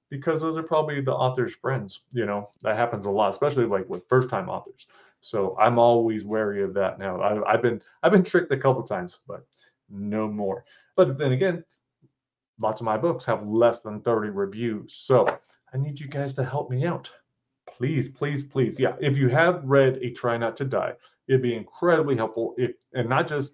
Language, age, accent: English, 30-49, American